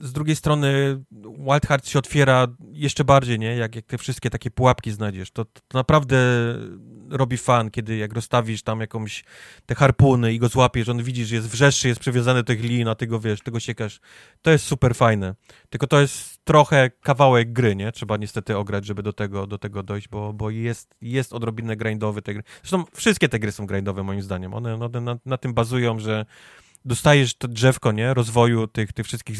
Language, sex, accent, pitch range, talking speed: Polish, male, native, 110-130 Hz, 200 wpm